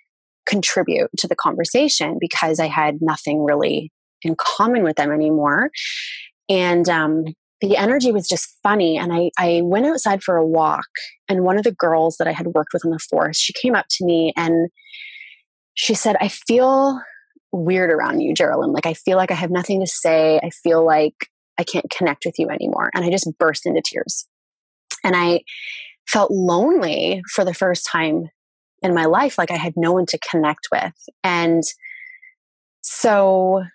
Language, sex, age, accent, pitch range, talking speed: English, female, 20-39, American, 160-195 Hz, 180 wpm